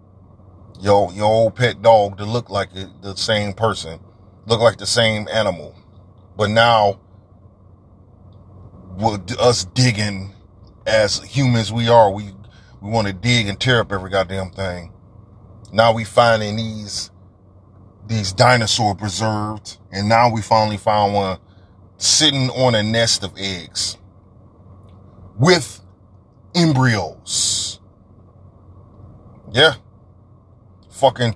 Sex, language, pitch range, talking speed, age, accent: male, English, 95-115 Hz, 115 wpm, 30-49, American